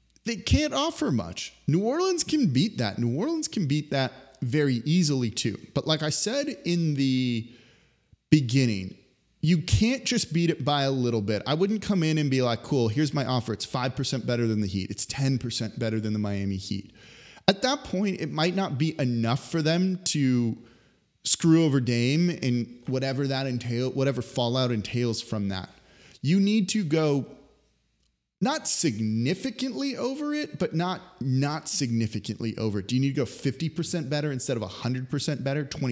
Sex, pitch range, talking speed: male, 120-165 Hz, 170 wpm